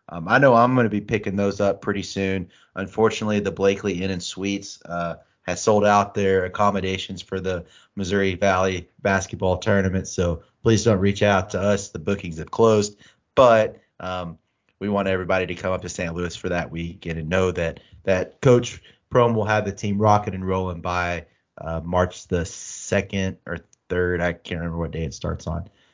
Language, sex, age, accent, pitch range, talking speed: English, male, 30-49, American, 95-115 Hz, 195 wpm